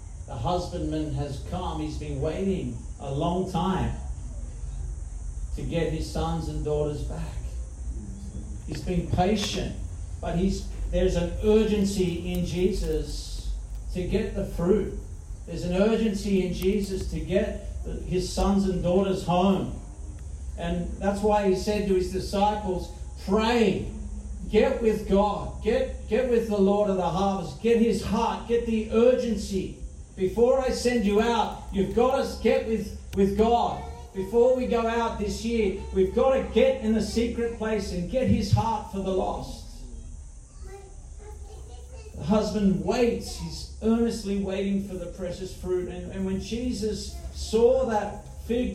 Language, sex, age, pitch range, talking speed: English, male, 50-69, 155-220 Hz, 145 wpm